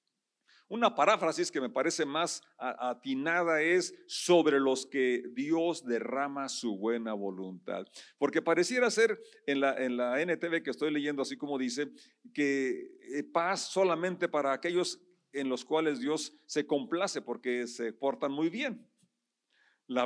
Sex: male